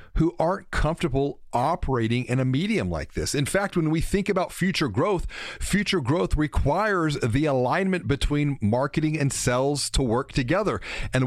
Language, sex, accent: English, male, American